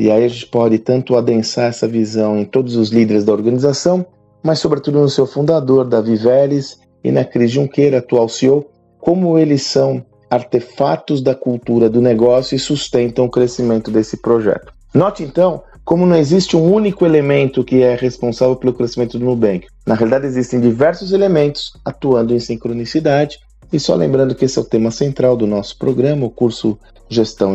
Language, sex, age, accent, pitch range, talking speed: Portuguese, male, 40-59, Brazilian, 115-140 Hz, 175 wpm